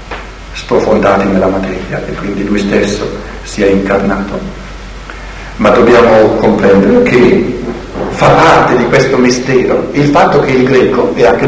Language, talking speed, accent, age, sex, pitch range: Italian, 135 wpm, native, 60-79, male, 105-145 Hz